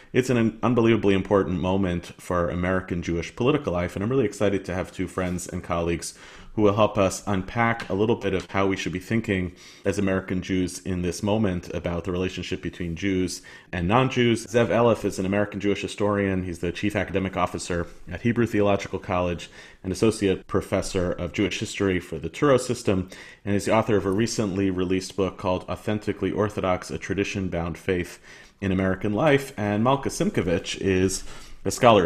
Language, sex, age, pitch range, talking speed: English, male, 30-49, 90-105 Hz, 180 wpm